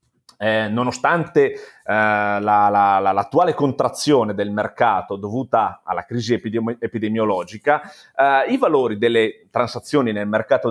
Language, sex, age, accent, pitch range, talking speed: Italian, male, 30-49, native, 105-125 Hz, 100 wpm